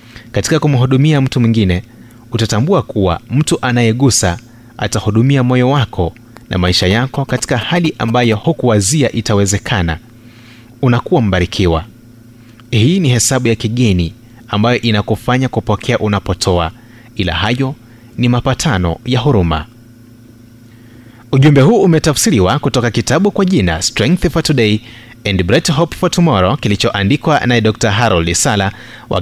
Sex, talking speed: male, 115 wpm